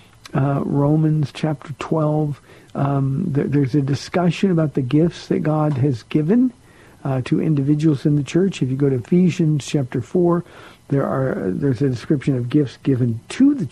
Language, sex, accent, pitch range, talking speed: English, male, American, 125-160 Hz, 165 wpm